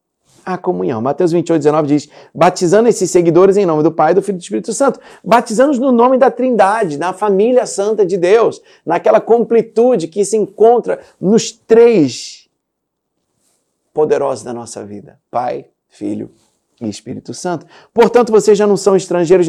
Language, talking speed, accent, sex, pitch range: Portuguese, 160 wpm, Brazilian, male, 165-225 Hz